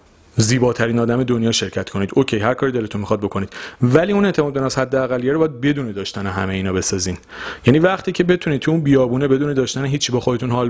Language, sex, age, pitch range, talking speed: Persian, male, 40-59, 110-135 Hz, 200 wpm